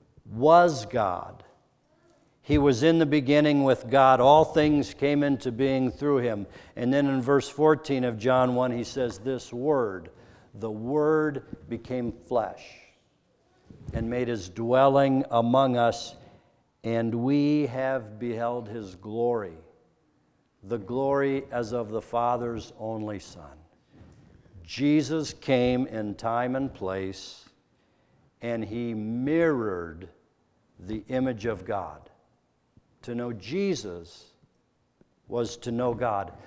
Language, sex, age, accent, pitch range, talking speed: English, male, 60-79, American, 110-135 Hz, 120 wpm